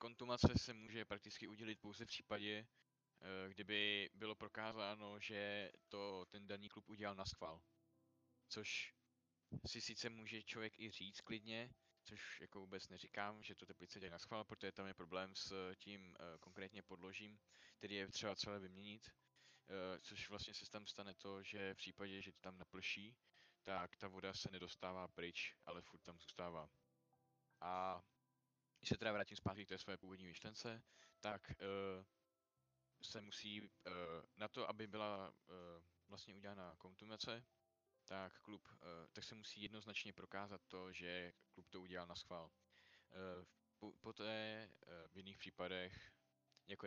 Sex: male